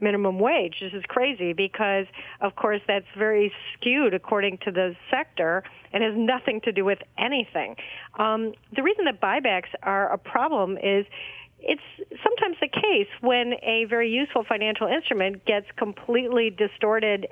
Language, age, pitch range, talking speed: English, 50-69, 190-225 Hz, 150 wpm